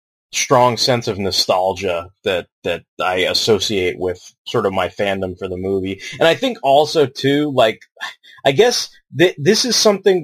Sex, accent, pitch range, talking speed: male, American, 115-155 Hz, 160 wpm